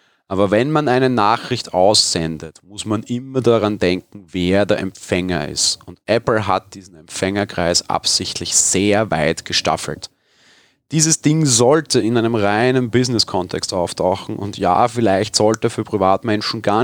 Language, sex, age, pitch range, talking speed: German, male, 30-49, 95-120 Hz, 140 wpm